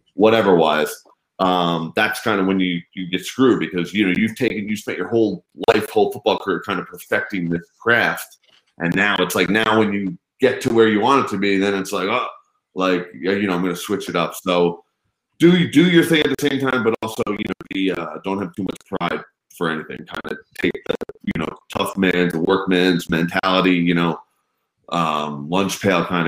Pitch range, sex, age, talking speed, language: 85-105 Hz, male, 20-39, 220 wpm, English